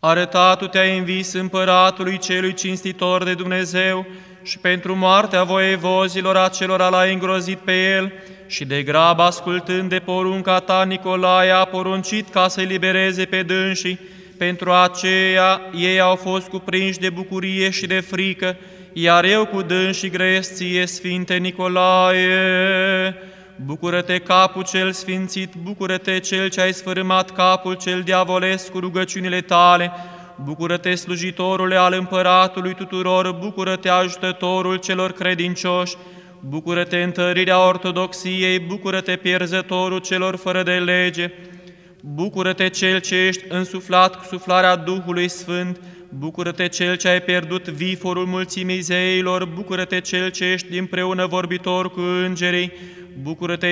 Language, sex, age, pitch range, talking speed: English, male, 20-39, 180-185 Hz, 125 wpm